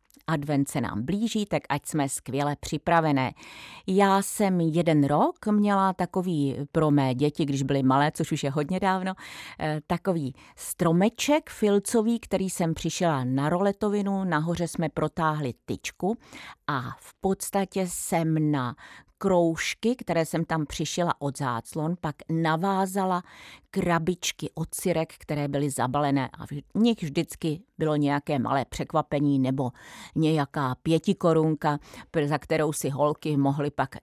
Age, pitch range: 40-59, 140-175 Hz